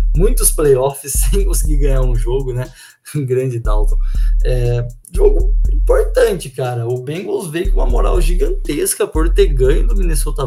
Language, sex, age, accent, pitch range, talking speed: Portuguese, male, 20-39, Brazilian, 120-145 Hz, 155 wpm